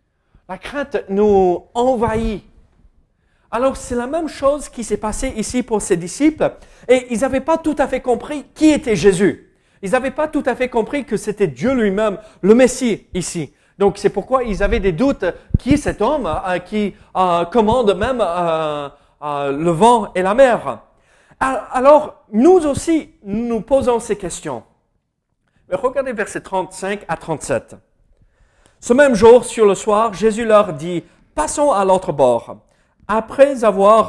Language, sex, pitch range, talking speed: French, male, 175-245 Hz, 165 wpm